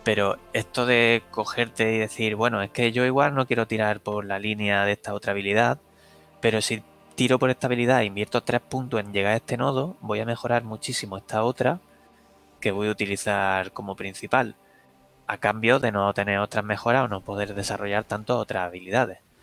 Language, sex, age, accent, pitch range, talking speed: Spanish, male, 20-39, Spanish, 100-120 Hz, 190 wpm